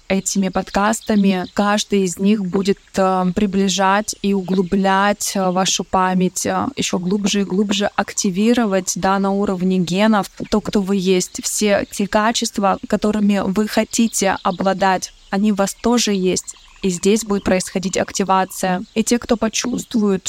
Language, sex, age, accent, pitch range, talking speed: Russian, female, 20-39, native, 190-210 Hz, 135 wpm